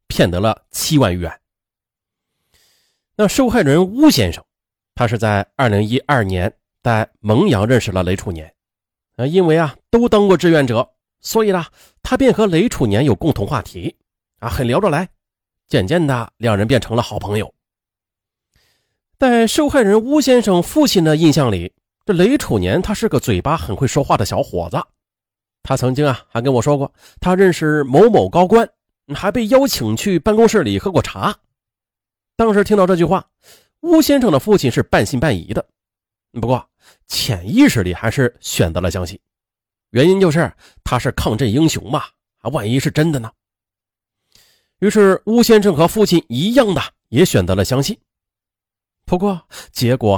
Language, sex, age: Chinese, male, 30-49